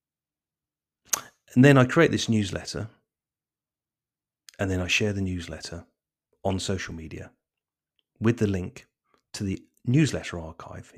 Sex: male